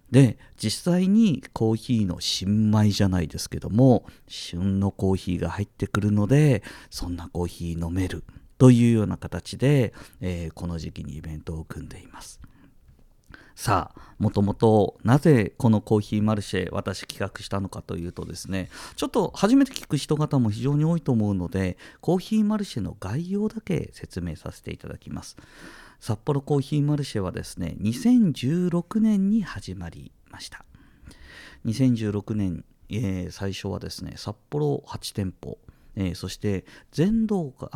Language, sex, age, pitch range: Japanese, male, 50-69, 95-150 Hz